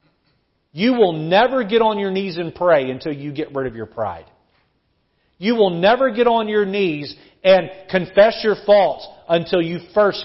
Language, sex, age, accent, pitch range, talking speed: English, male, 40-59, American, 145-210 Hz, 175 wpm